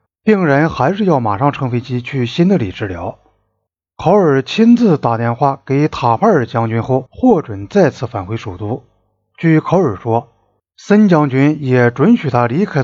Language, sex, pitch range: Chinese, male, 110-170 Hz